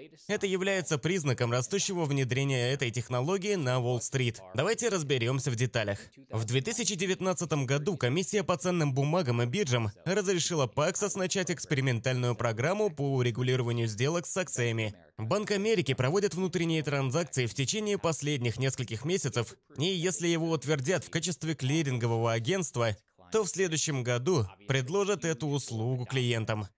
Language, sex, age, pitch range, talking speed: Russian, male, 20-39, 125-185 Hz, 130 wpm